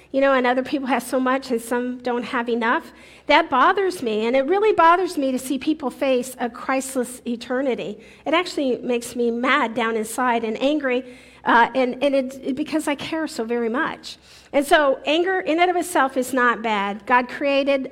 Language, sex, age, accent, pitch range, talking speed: English, female, 50-69, American, 250-300 Hz, 200 wpm